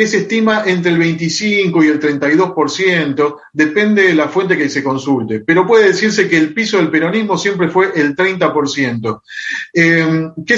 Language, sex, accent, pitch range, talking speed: Spanish, male, Argentinian, 140-185 Hz, 165 wpm